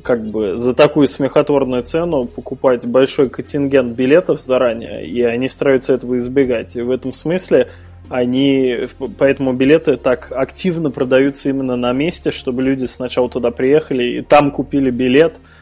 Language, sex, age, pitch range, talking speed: Russian, male, 20-39, 125-140 Hz, 145 wpm